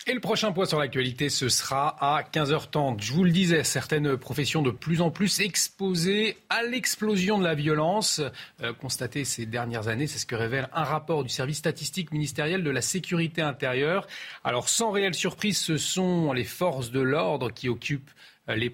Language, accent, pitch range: French, French, 130-170 Hz